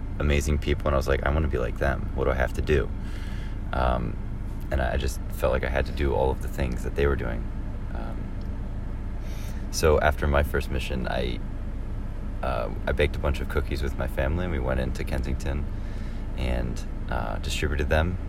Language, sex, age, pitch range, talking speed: English, male, 30-49, 70-95 Hz, 205 wpm